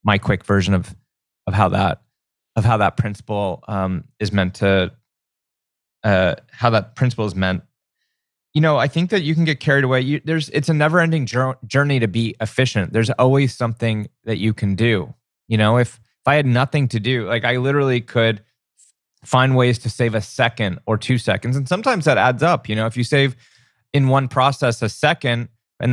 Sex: male